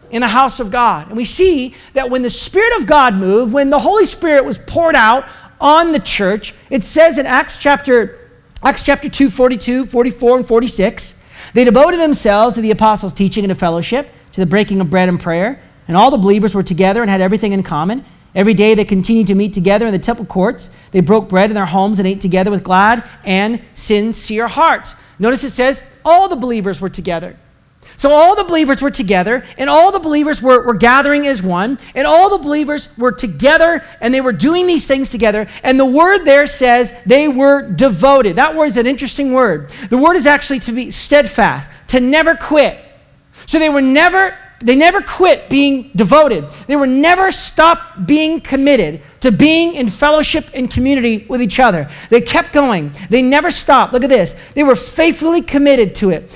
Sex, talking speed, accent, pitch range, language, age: male, 200 wpm, American, 210-285 Hz, English, 40-59